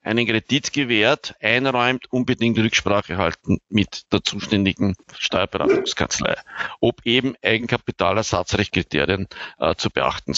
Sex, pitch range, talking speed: male, 110-140 Hz, 100 wpm